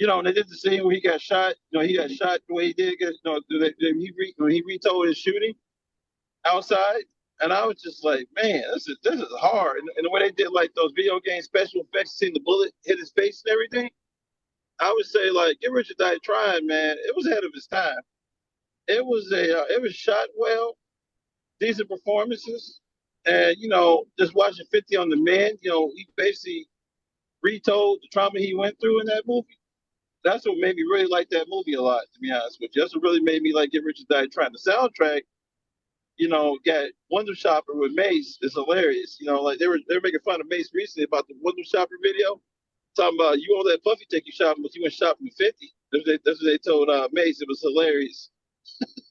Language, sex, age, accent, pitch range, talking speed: English, male, 40-59, American, 160-245 Hz, 225 wpm